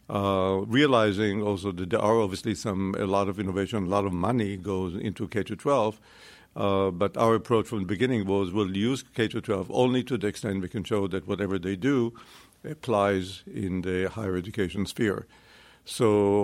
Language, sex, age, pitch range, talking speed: English, male, 60-79, 95-110 Hz, 175 wpm